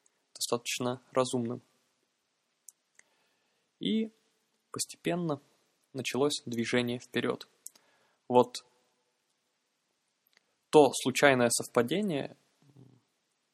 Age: 20-39